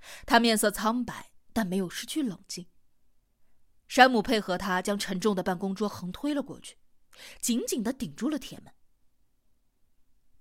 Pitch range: 185-245 Hz